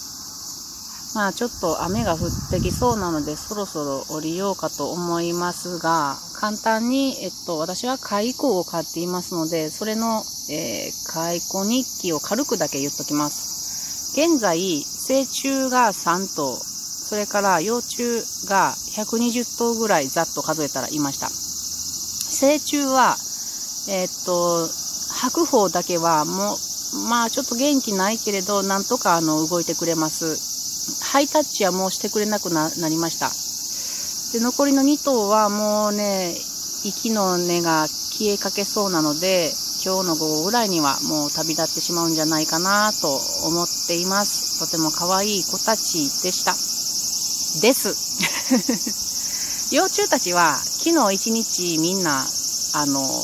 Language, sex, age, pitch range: Japanese, female, 40-59, 165-230 Hz